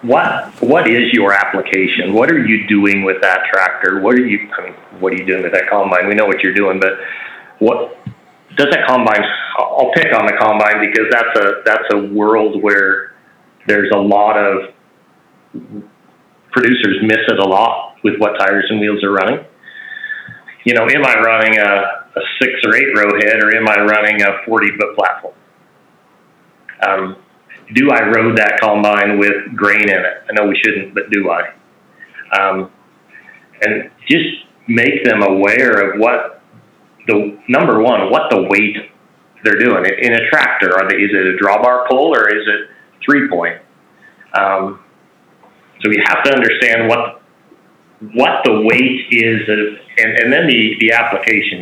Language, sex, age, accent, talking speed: English, male, 40-59, American, 170 wpm